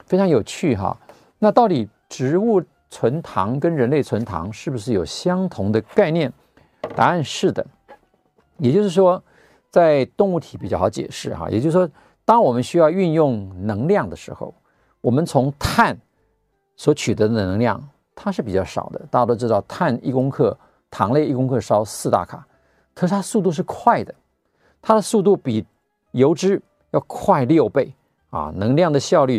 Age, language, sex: 50-69, Chinese, male